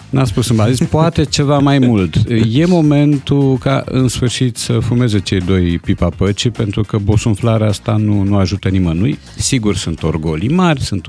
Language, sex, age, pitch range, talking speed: Romanian, male, 50-69, 85-125 Hz, 175 wpm